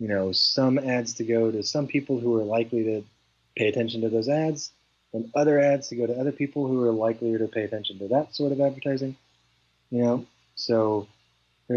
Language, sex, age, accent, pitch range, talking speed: English, male, 30-49, American, 100-125 Hz, 210 wpm